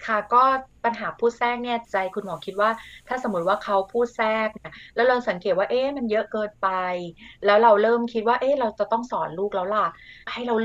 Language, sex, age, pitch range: Thai, female, 30-49, 195-245 Hz